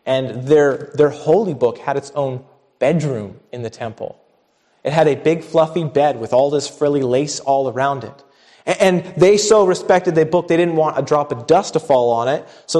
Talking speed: 210 wpm